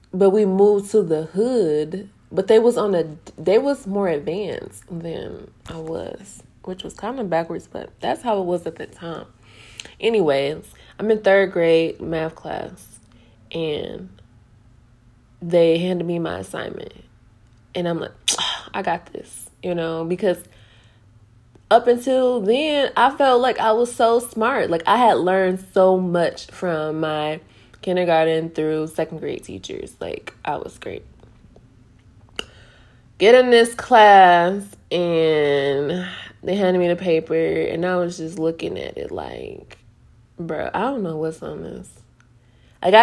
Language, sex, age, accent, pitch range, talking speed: English, female, 20-39, American, 155-215 Hz, 150 wpm